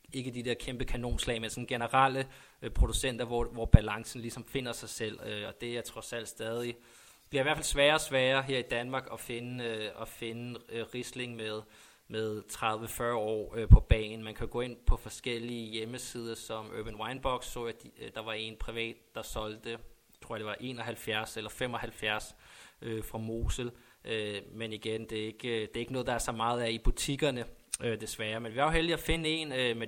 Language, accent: Danish, native